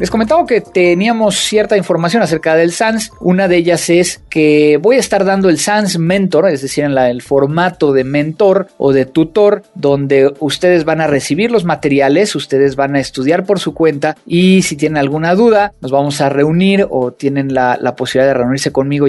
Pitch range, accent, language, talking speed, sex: 140-190 Hz, Mexican, Spanish, 190 wpm, male